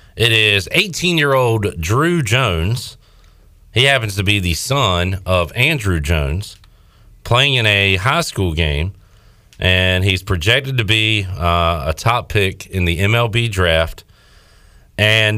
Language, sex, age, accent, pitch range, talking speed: English, male, 40-59, American, 85-110 Hz, 135 wpm